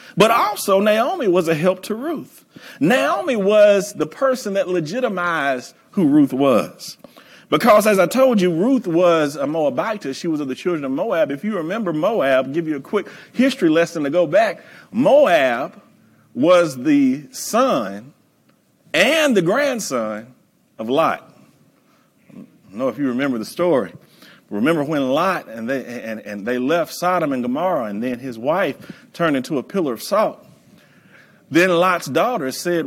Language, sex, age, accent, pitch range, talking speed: English, male, 40-59, American, 155-240 Hz, 160 wpm